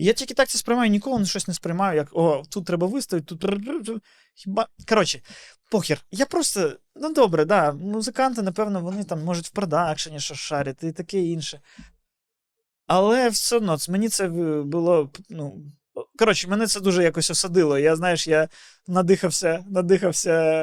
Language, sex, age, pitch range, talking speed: Ukrainian, male, 20-39, 160-210 Hz, 155 wpm